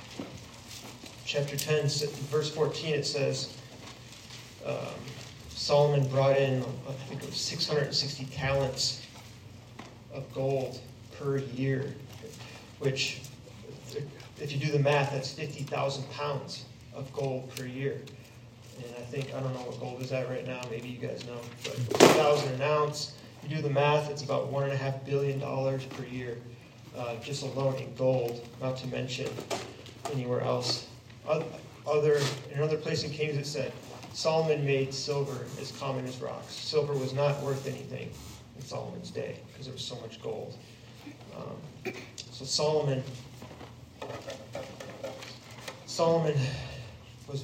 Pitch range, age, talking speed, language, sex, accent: 125-140 Hz, 30-49, 140 wpm, English, male, American